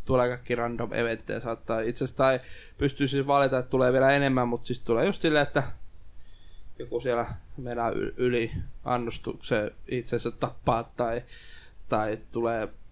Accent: native